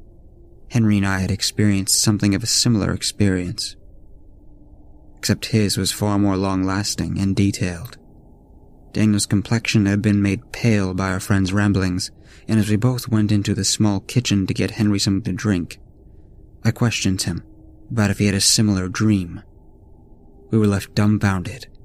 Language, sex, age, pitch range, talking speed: English, male, 30-49, 95-105 Hz, 155 wpm